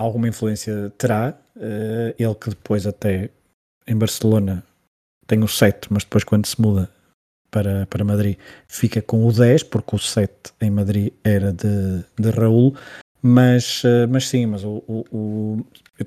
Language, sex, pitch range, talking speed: Portuguese, male, 105-120 Hz, 140 wpm